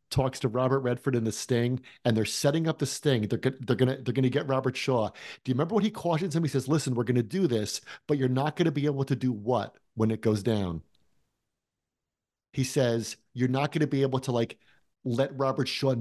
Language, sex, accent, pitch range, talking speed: English, male, American, 125-150 Hz, 225 wpm